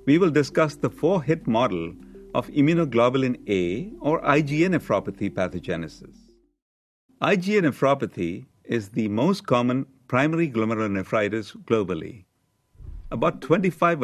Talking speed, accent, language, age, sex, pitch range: 105 wpm, Indian, English, 50-69, male, 100-150 Hz